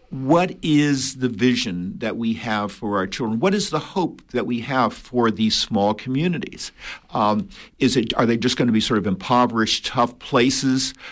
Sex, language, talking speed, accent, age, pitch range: male, English, 190 wpm, American, 50-69, 115-165 Hz